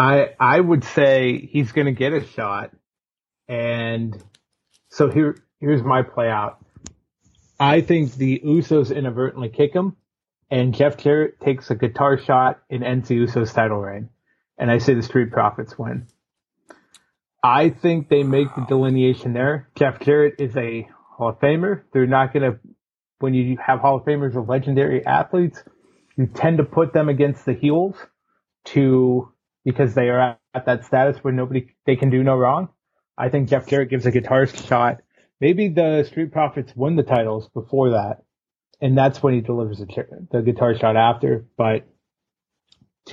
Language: English